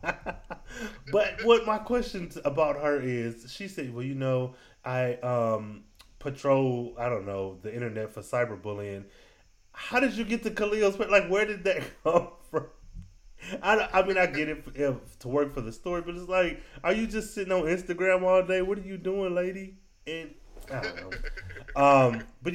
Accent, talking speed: American, 180 wpm